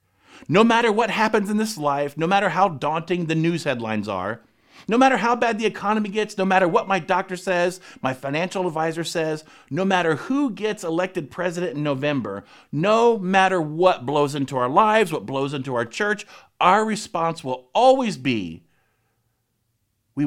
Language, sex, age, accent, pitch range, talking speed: English, male, 50-69, American, 125-205 Hz, 170 wpm